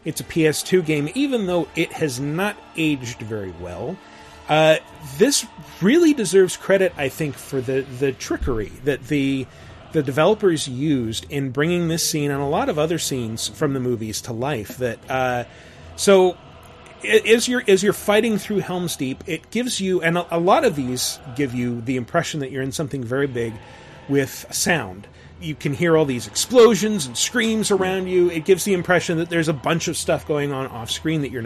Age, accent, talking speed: 30-49, American, 190 wpm